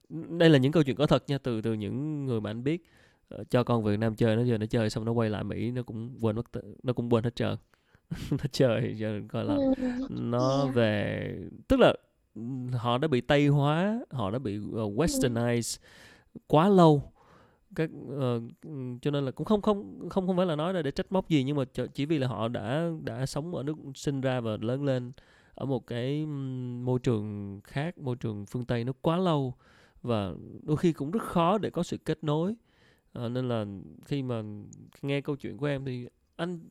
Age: 20-39